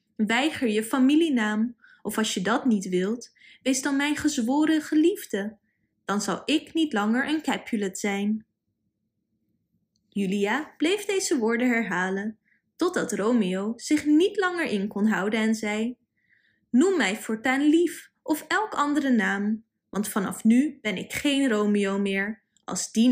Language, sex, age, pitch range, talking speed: Dutch, female, 20-39, 205-275 Hz, 145 wpm